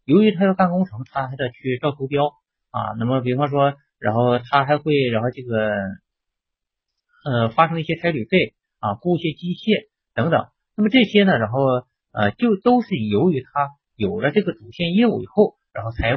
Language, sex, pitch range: Chinese, male, 120-180 Hz